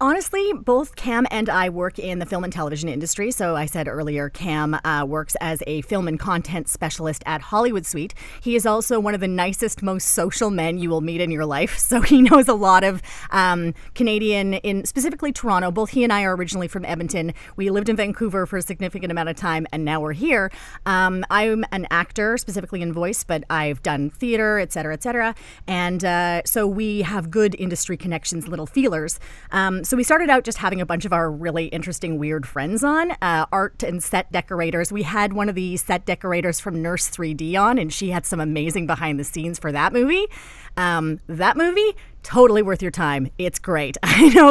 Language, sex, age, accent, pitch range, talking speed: English, female, 30-49, American, 165-220 Hz, 210 wpm